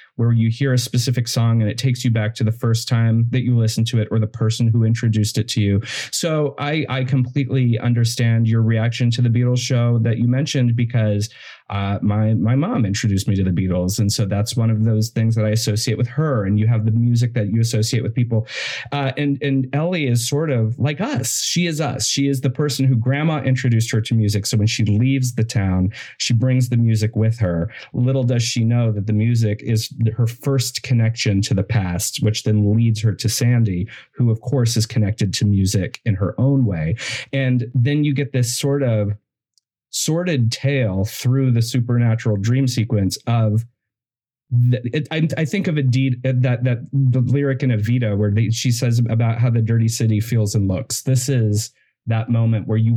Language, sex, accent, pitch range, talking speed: English, male, American, 110-130 Hz, 205 wpm